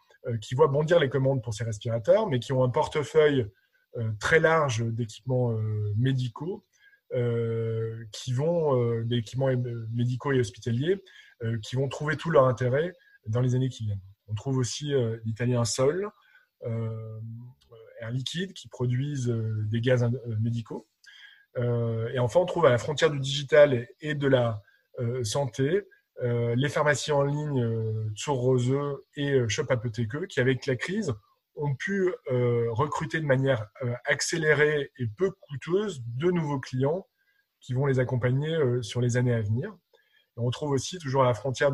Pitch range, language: 120-150 Hz, French